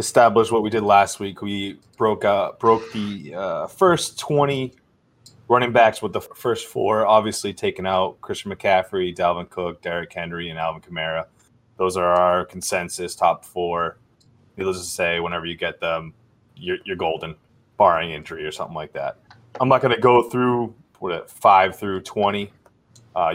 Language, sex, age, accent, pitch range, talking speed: English, male, 20-39, American, 90-115 Hz, 170 wpm